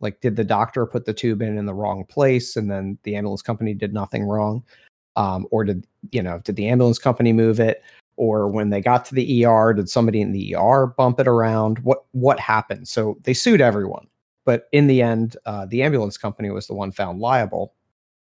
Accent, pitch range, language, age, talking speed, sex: American, 105-130 Hz, English, 30-49, 215 wpm, male